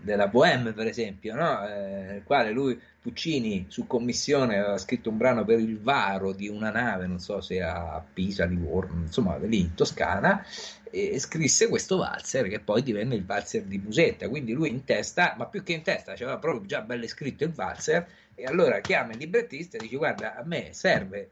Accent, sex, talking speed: native, male, 195 wpm